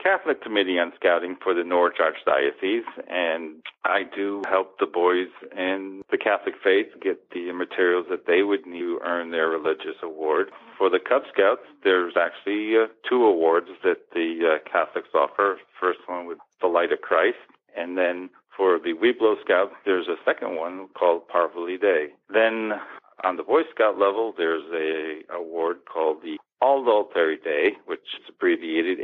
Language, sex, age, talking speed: English, male, 50-69, 170 wpm